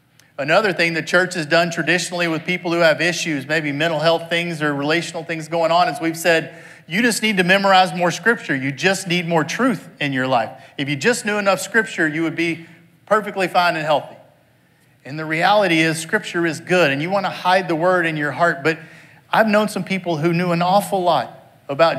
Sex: male